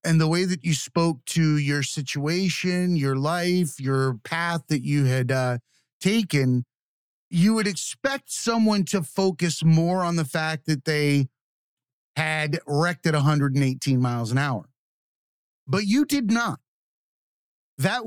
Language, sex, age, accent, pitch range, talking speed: English, male, 30-49, American, 145-205 Hz, 140 wpm